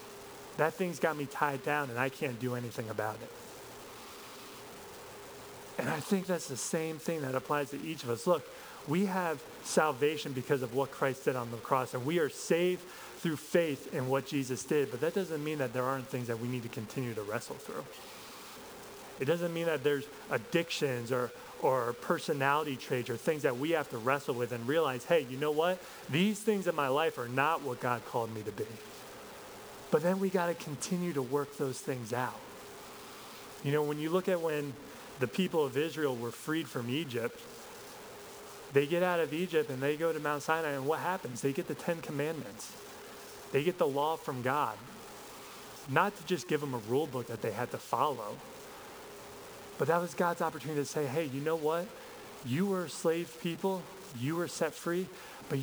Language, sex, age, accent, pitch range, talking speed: English, male, 30-49, American, 130-170 Hz, 200 wpm